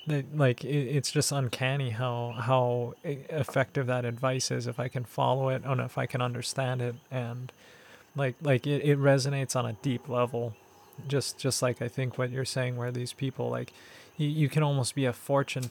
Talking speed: 185 wpm